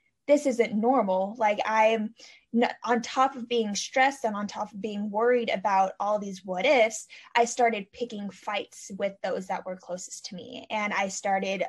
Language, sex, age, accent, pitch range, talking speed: English, female, 10-29, American, 195-240 Hz, 180 wpm